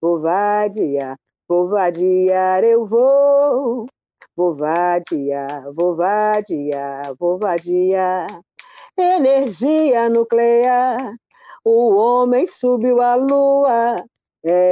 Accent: Brazilian